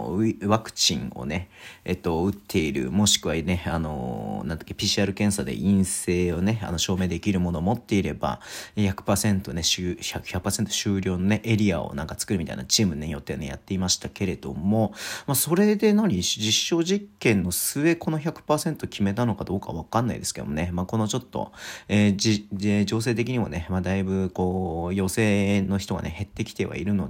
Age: 40-59